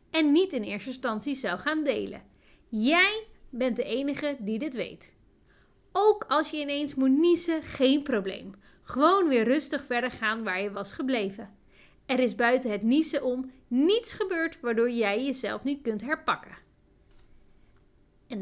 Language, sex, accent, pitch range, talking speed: Dutch, female, Dutch, 220-305 Hz, 155 wpm